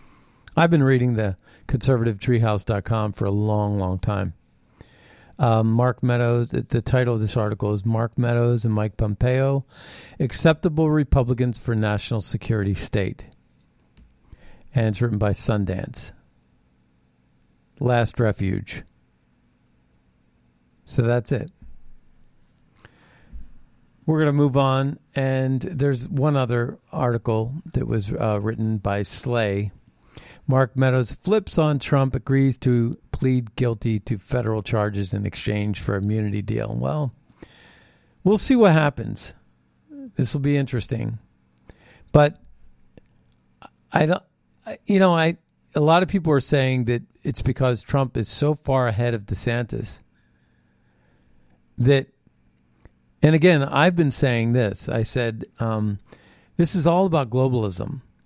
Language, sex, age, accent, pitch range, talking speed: English, male, 40-59, American, 100-135 Hz, 125 wpm